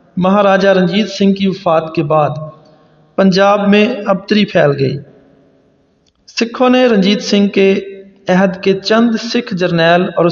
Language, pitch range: English, 155-195 Hz